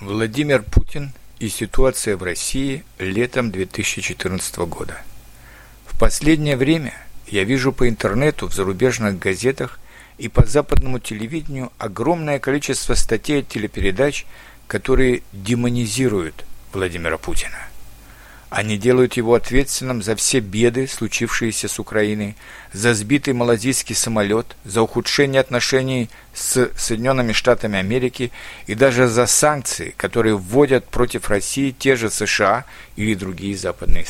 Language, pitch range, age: Russian, 110-135 Hz, 50-69